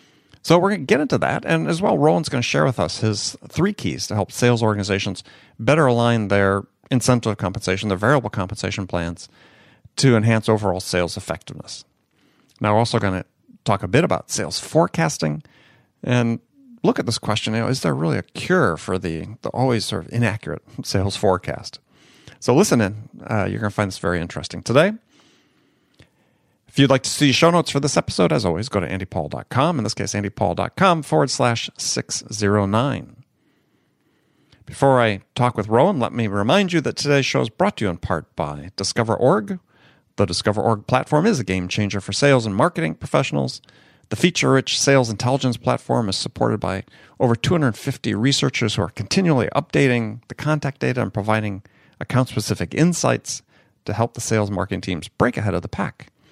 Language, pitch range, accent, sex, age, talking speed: English, 100-135 Hz, American, male, 40-59, 180 wpm